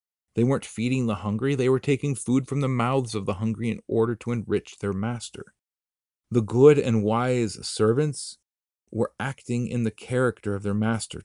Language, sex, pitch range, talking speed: English, male, 95-120 Hz, 180 wpm